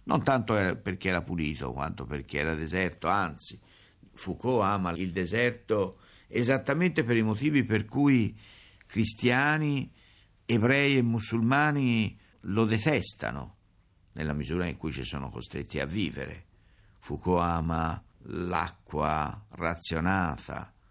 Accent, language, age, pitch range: native, Italian, 60-79, 85-110 Hz